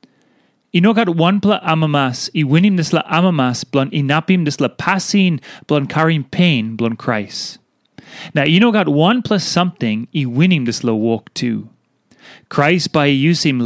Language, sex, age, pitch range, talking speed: English, male, 30-49, 130-190 Hz, 170 wpm